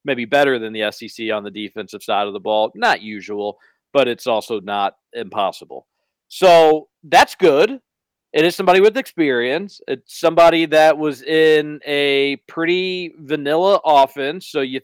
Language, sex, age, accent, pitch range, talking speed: English, male, 40-59, American, 130-170 Hz, 155 wpm